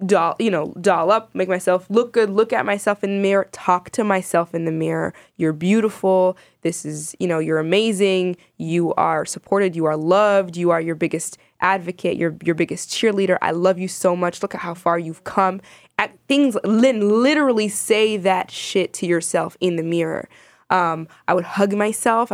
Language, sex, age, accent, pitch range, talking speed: English, female, 20-39, American, 170-200 Hz, 190 wpm